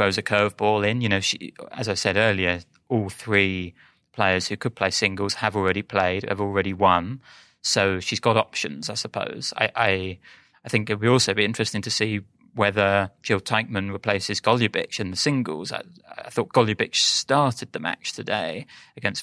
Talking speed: 180 wpm